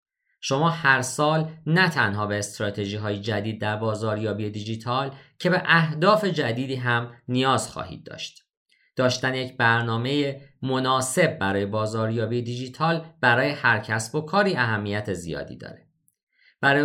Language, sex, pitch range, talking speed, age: Persian, male, 105-145 Hz, 130 wpm, 40-59